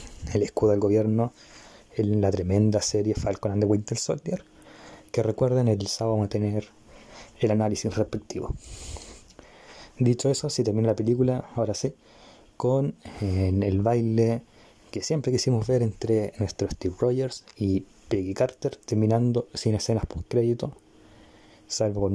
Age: 20-39